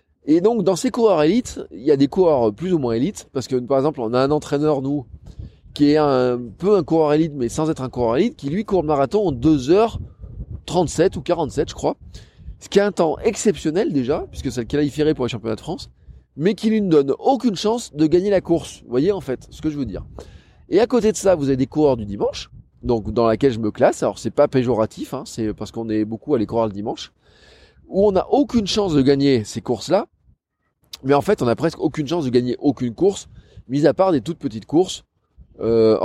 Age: 20-39